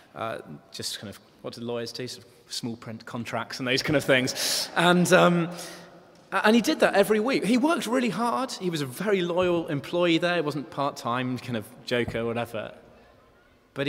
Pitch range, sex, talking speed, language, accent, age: 120-170 Hz, male, 205 wpm, English, British, 20-39